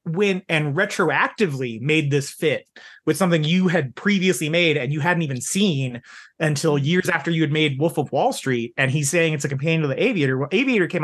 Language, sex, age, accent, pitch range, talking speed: English, male, 30-49, American, 130-175 Hz, 210 wpm